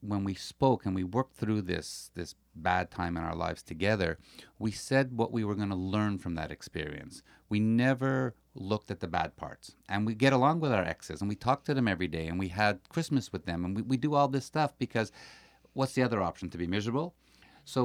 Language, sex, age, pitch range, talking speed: English, male, 50-69, 95-120 Hz, 225 wpm